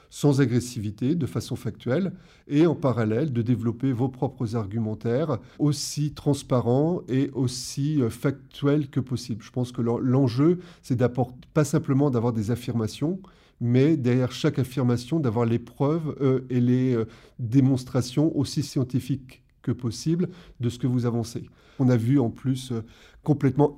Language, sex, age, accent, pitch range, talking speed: French, male, 30-49, French, 115-135 Hz, 145 wpm